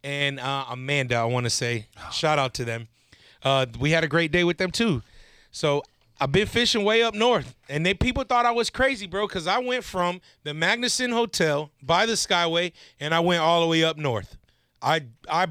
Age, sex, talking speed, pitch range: 30-49, male, 215 wpm, 140-195 Hz